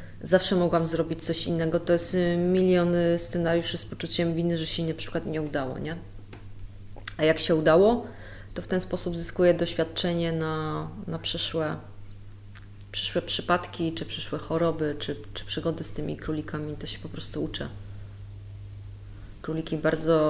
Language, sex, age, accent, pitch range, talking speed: Polish, female, 20-39, native, 100-165 Hz, 150 wpm